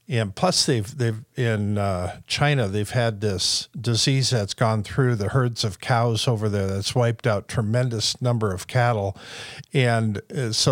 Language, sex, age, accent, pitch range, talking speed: English, male, 50-69, American, 105-125 Hz, 160 wpm